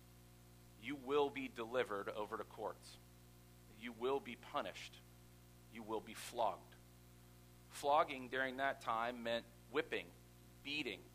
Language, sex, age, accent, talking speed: English, male, 40-59, American, 120 wpm